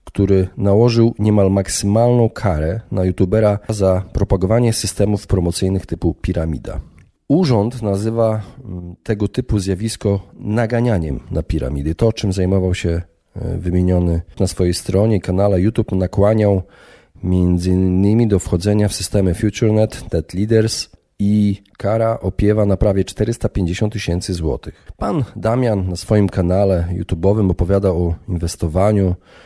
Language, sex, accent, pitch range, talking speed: Polish, male, native, 90-110 Hz, 115 wpm